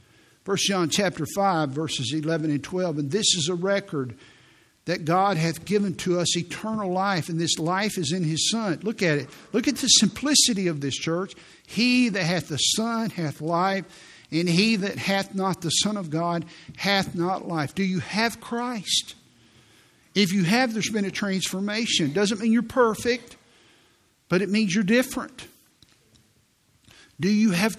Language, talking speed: English, 175 wpm